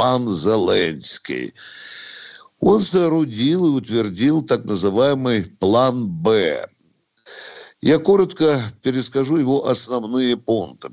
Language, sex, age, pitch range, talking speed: Russian, male, 60-79, 100-150 Hz, 80 wpm